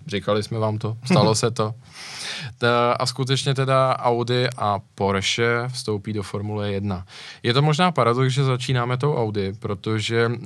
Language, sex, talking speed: Czech, male, 150 wpm